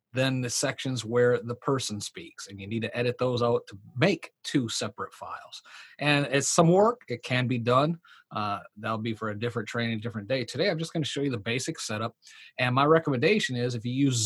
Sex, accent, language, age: male, American, English, 40-59